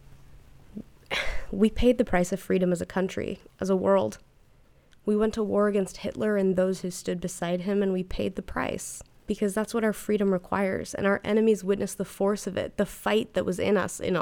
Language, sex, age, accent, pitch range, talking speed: English, female, 20-39, American, 175-205 Hz, 210 wpm